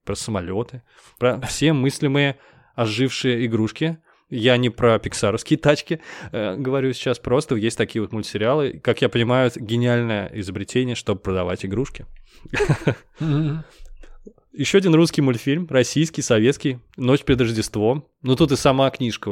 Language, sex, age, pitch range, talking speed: Russian, male, 20-39, 110-140 Hz, 135 wpm